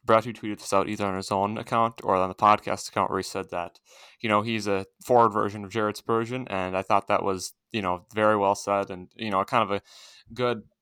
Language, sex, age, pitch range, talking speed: English, male, 20-39, 95-110 Hz, 250 wpm